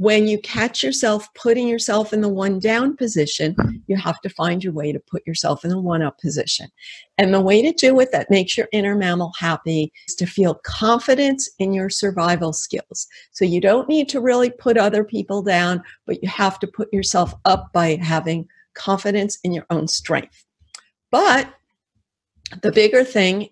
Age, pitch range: 50-69, 170-230 Hz